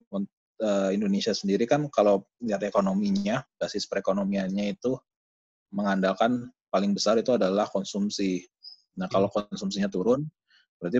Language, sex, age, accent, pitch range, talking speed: Indonesian, male, 30-49, native, 95-115 Hz, 110 wpm